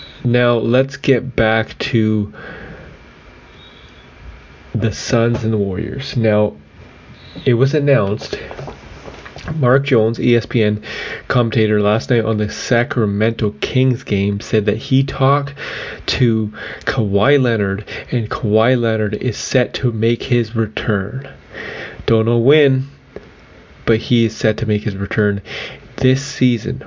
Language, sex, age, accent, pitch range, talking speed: English, male, 30-49, American, 110-130 Hz, 120 wpm